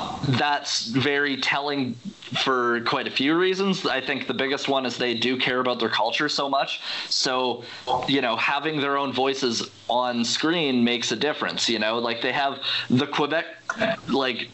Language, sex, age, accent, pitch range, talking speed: English, male, 20-39, American, 125-150 Hz, 175 wpm